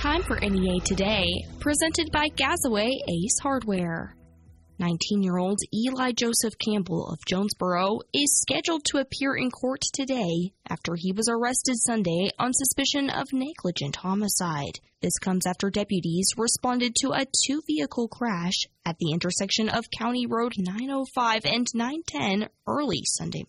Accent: American